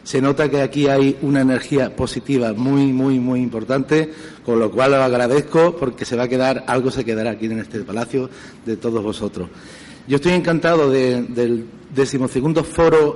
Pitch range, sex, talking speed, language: 130-150 Hz, male, 180 wpm, Spanish